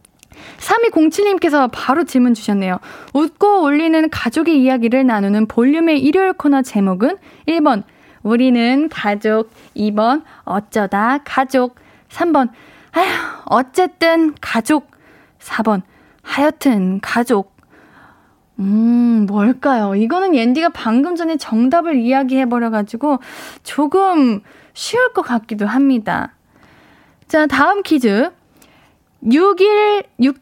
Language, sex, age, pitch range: Korean, female, 20-39, 230-335 Hz